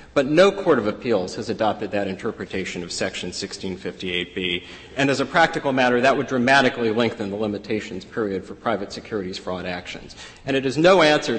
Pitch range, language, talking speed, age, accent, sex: 110-130 Hz, English, 185 wpm, 40-59, American, male